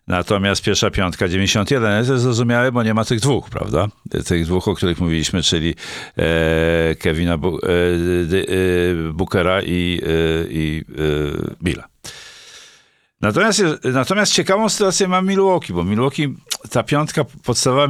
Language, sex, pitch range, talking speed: Polish, male, 85-115 Hz, 125 wpm